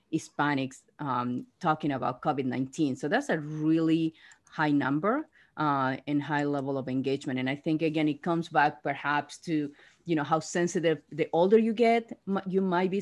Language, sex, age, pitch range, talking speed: English, female, 30-49, 140-170 Hz, 175 wpm